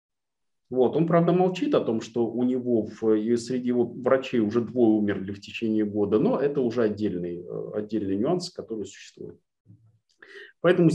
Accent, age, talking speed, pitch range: native, 30-49, 145 wpm, 105-145 Hz